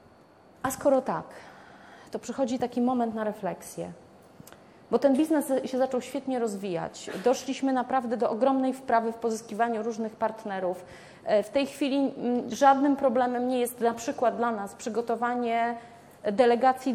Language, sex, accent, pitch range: Polish, female, native, 220-260 Hz